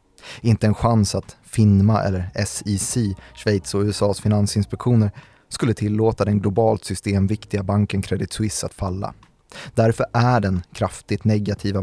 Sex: male